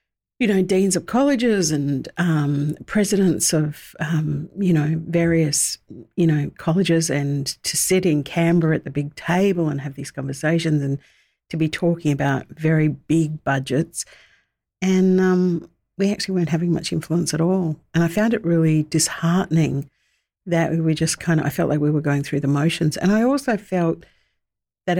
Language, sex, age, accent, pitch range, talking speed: English, female, 50-69, Australian, 150-175 Hz, 175 wpm